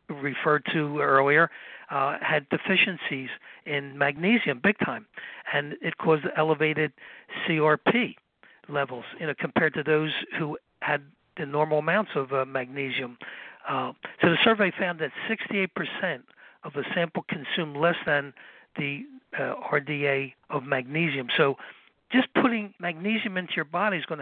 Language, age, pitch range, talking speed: English, 60-79, 150-200 Hz, 140 wpm